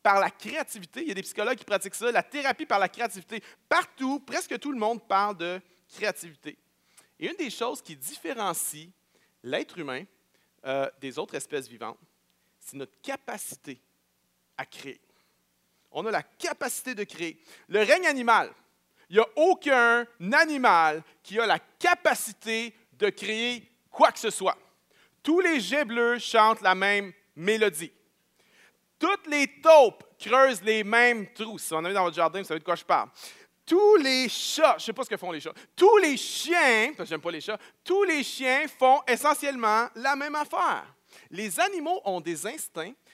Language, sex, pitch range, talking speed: French, male, 185-275 Hz, 180 wpm